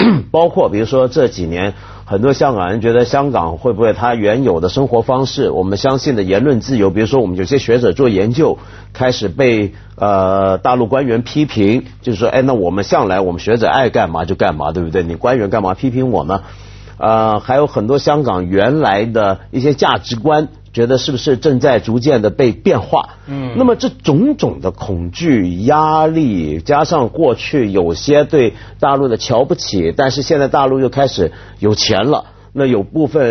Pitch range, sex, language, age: 100-140 Hz, male, Chinese, 50-69